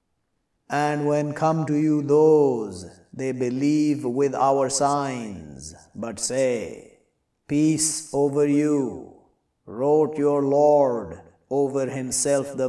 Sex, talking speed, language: male, 105 wpm, English